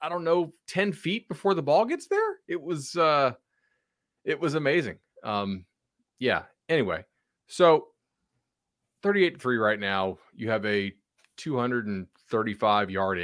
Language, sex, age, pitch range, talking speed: English, male, 30-49, 100-130 Hz, 120 wpm